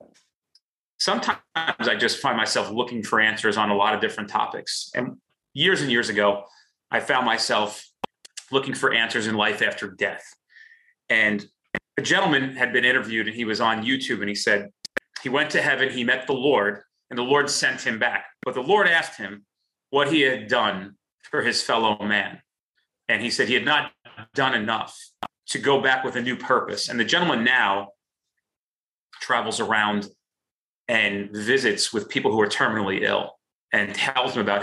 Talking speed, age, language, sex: 180 wpm, 30-49, English, male